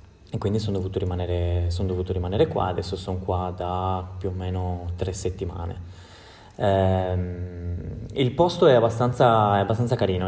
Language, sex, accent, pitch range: Italian, male, native, 90-100 Hz